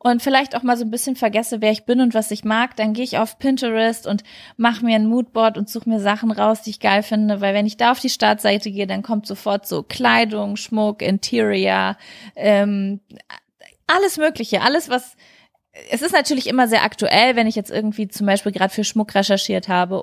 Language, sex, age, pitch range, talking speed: German, female, 20-39, 195-230 Hz, 215 wpm